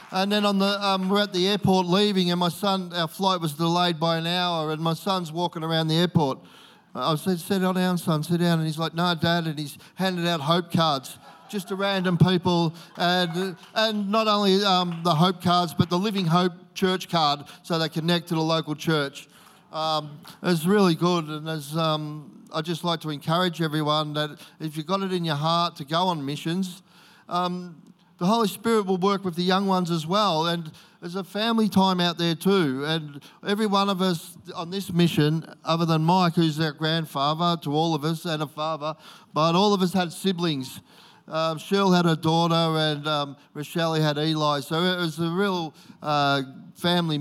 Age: 40-59